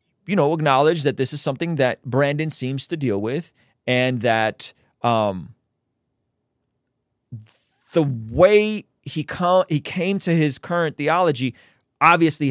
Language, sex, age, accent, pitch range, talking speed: English, male, 30-49, American, 120-165 Hz, 130 wpm